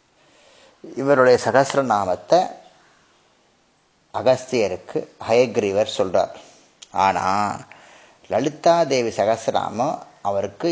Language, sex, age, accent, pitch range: Tamil, male, 30-49, native, 110-145 Hz